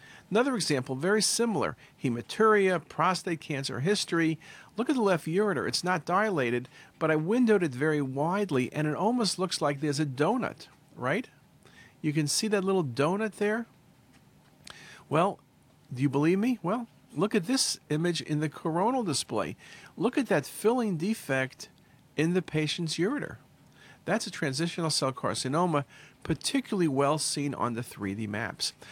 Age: 50-69